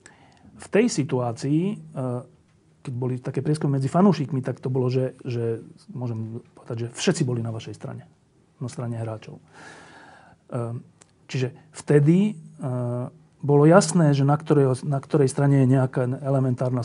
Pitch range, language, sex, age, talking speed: 130-155 Hz, Slovak, male, 40-59, 135 wpm